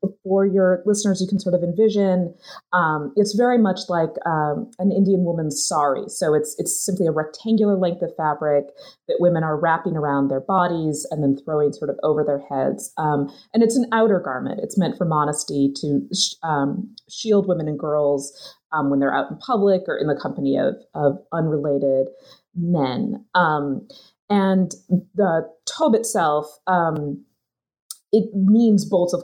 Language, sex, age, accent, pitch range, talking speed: English, female, 30-49, American, 155-210 Hz, 170 wpm